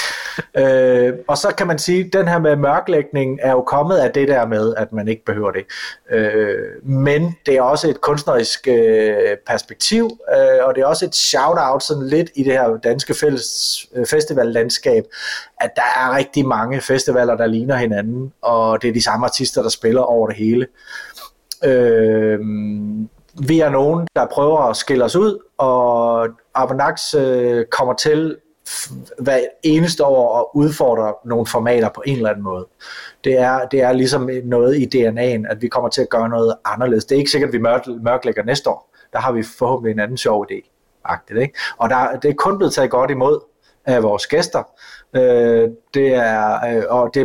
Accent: native